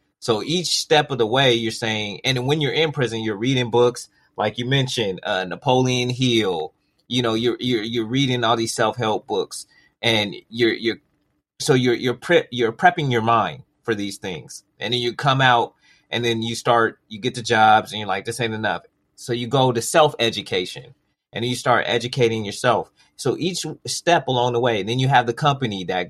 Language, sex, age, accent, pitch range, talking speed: English, male, 30-49, American, 115-145 Hz, 205 wpm